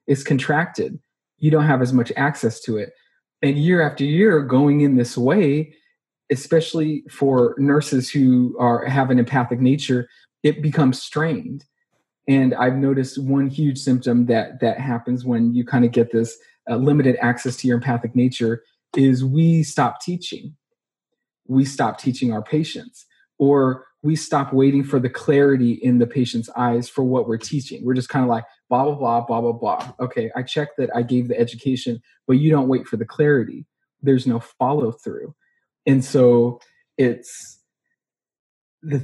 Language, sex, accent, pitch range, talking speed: English, male, American, 120-145 Hz, 170 wpm